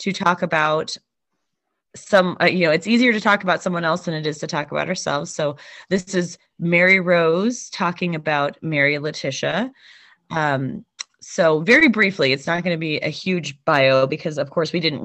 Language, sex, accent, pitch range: English, female, American, 150-185 Hz